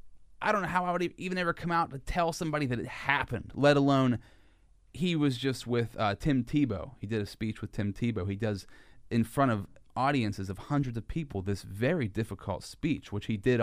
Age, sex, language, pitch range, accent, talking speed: 30-49, male, English, 100-135 Hz, American, 215 wpm